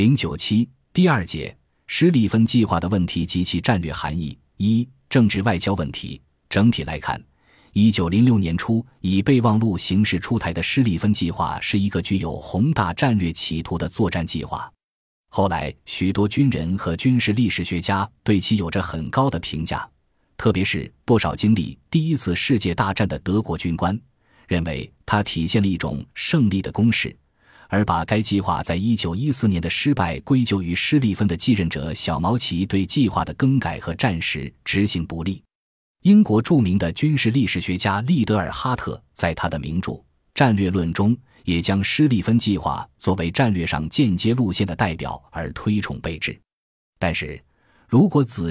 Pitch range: 85-115 Hz